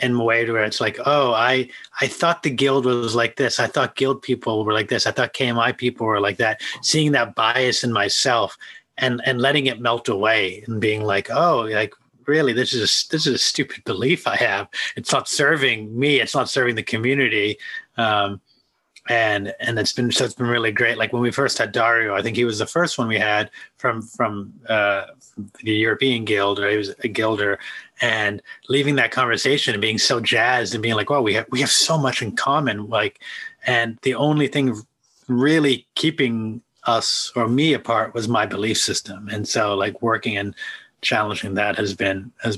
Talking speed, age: 205 wpm, 30-49